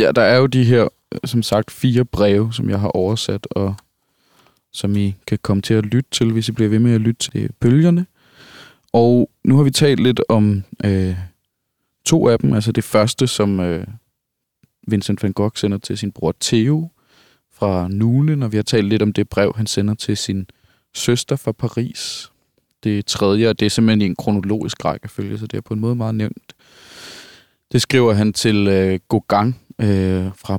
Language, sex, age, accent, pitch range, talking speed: Danish, male, 20-39, native, 100-115 Hz, 195 wpm